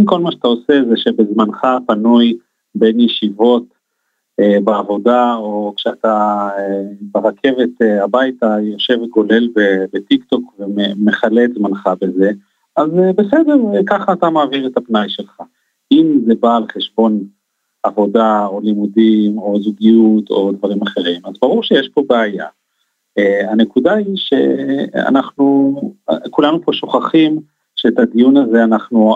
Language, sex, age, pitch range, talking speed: Hebrew, male, 40-59, 105-135 Hz, 115 wpm